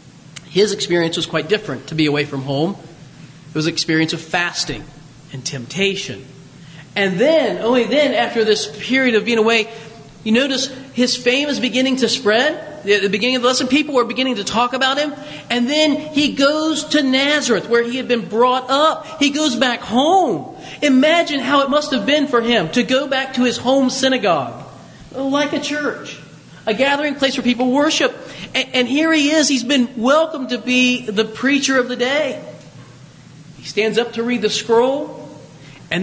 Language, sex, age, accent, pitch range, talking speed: English, male, 40-59, American, 200-270 Hz, 185 wpm